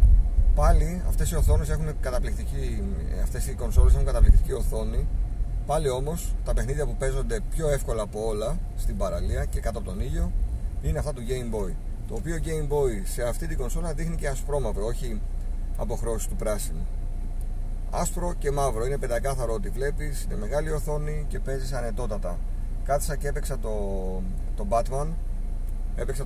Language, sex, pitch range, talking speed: Greek, male, 80-125 Hz, 160 wpm